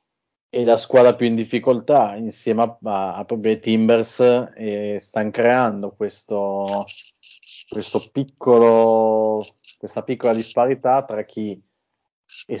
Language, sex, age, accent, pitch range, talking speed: Italian, male, 20-39, native, 100-115 Hz, 120 wpm